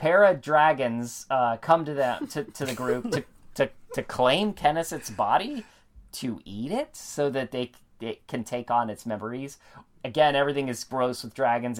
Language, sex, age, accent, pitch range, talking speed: English, male, 30-49, American, 110-145 Hz, 175 wpm